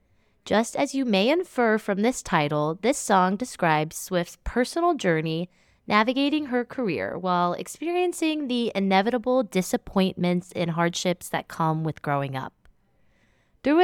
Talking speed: 130 wpm